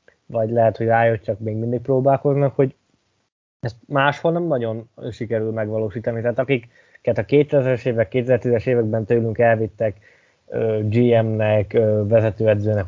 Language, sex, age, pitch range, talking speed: Hungarian, male, 20-39, 115-135 Hz, 120 wpm